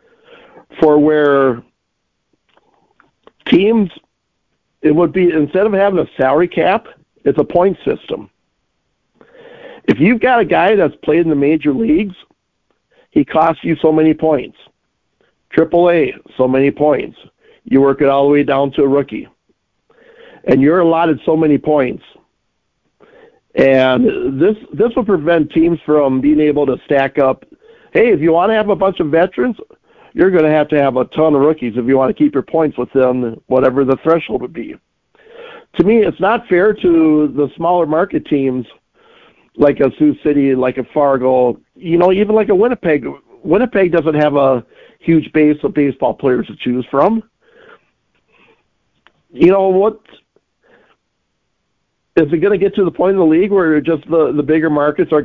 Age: 50-69